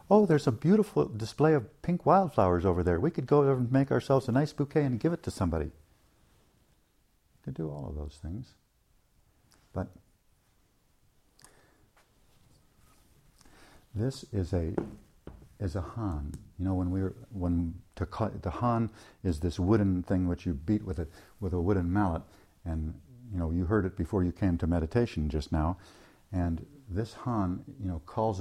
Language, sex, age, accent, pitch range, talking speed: English, male, 60-79, American, 80-105 Hz, 165 wpm